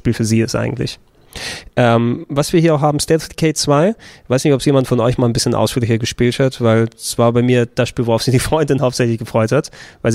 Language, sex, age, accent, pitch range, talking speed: German, male, 20-39, German, 115-140 Hz, 255 wpm